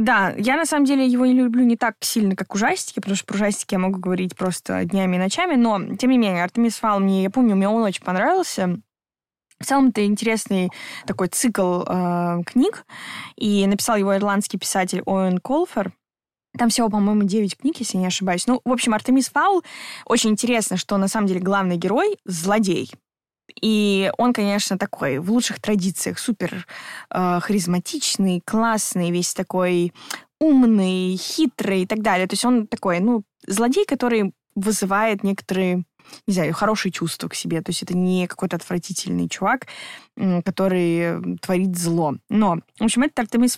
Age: 20-39